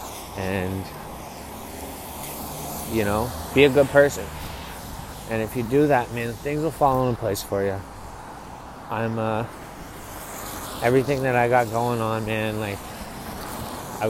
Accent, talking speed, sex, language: American, 130 wpm, male, English